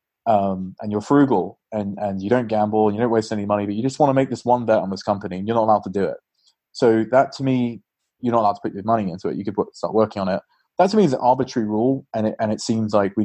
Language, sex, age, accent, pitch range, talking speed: English, male, 20-39, British, 100-115 Hz, 305 wpm